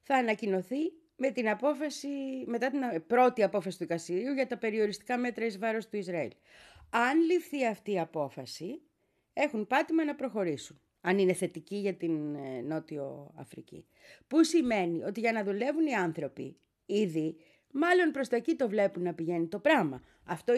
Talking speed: 160 wpm